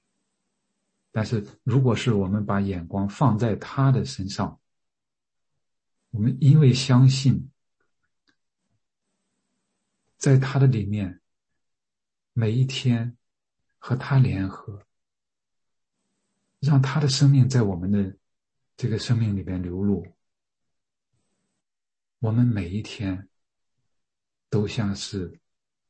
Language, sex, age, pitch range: English, male, 50-69, 95-125 Hz